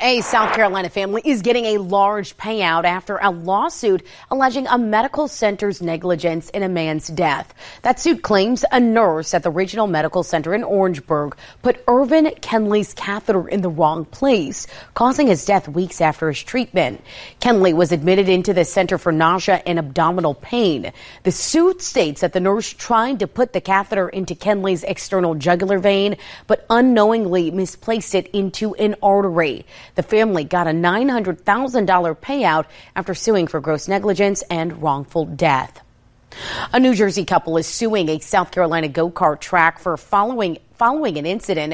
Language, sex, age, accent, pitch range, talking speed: English, female, 30-49, American, 170-220 Hz, 160 wpm